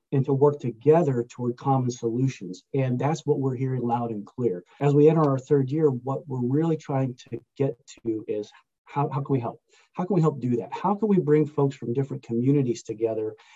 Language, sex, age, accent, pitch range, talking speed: English, male, 40-59, American, 120-145 Hz, 215 wpm